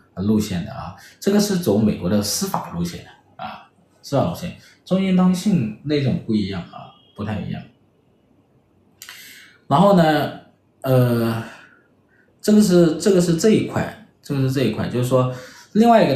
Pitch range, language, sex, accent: 105-170 Hz, Chinese, male, native